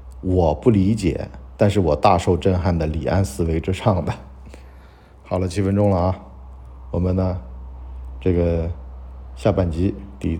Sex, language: male, Chinese